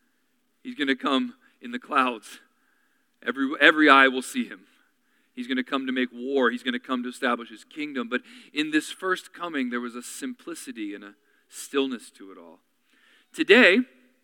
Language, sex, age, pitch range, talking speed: English, male, 40-59, 160-270 Hz, 185 wpm